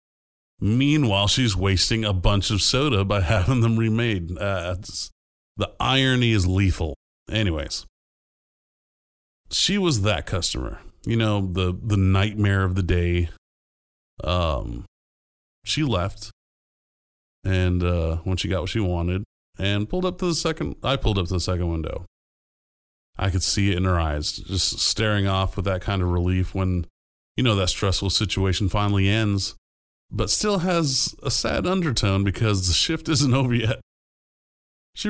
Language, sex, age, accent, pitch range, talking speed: English, male, 30-49, American, 85-110 Hz, 150 wpm